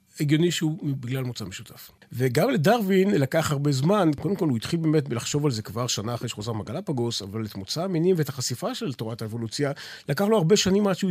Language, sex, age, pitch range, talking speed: Hebrew, male, 40-59, 120-170 Hz, 205 wpm